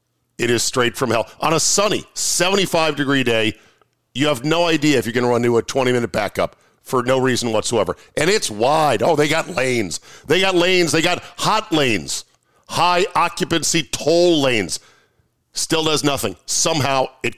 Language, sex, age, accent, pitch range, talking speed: English, male, 50-69, American, 115-155 Hz, 170 wpm